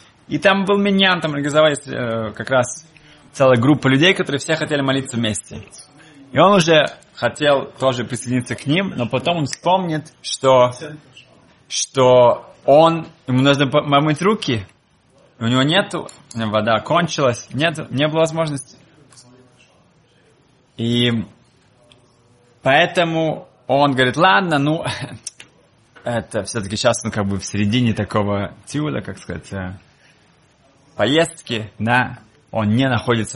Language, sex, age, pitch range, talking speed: Russian, male, 20-39, 115-155 Hz, 125 wpm